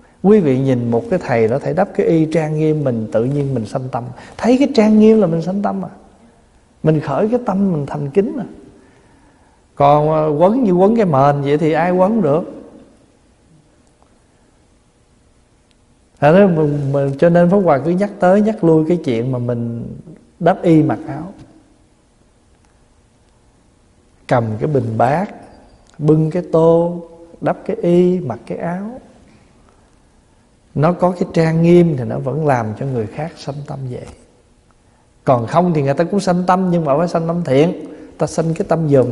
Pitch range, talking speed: 125-180 Hz, 175 wpm